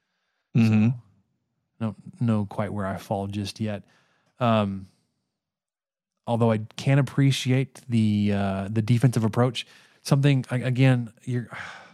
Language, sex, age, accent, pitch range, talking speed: English, male, 20-39, American, 105-125 Hz, 115 wpm